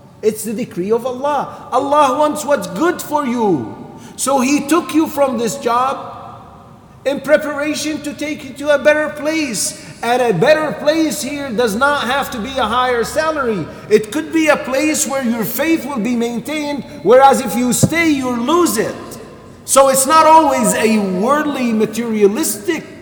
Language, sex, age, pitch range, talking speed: English, male, 40-59, 195-285 Hz, 170 wpm